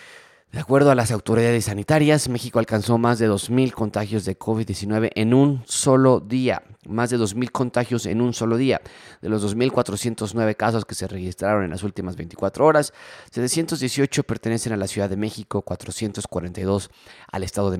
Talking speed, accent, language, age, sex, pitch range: 165 wpm, Mexican, Spanish, 30-49, male, 95-115 Hz